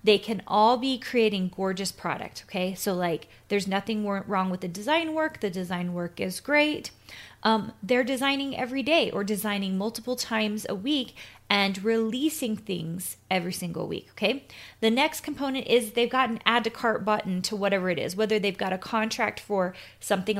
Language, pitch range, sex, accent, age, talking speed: English, 195-250 Hz, female, American, 20-39, 180 wpm